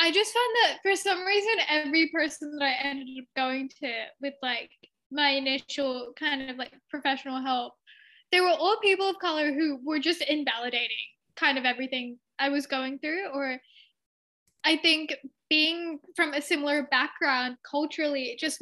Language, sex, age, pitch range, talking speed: English, female, 10-29, 270-335 Hz, 170 wpm